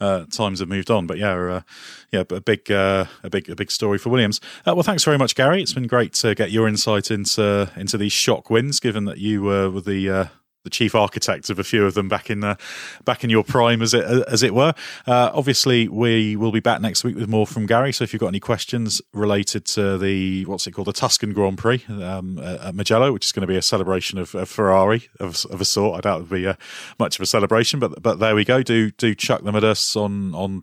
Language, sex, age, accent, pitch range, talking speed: English, male, 30-49, British, 95-120 Hz, 260 wpm